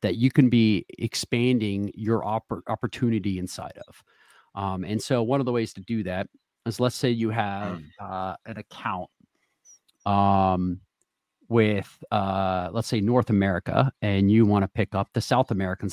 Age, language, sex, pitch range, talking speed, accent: 40-59, English, male, 100-120 Hz, 160 wpm, American